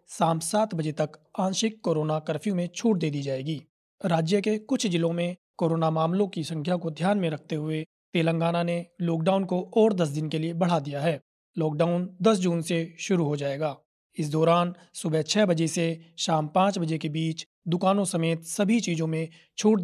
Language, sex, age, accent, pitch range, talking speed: Hindi, male, 30-49, native, 160-185 Hz, 190 wpm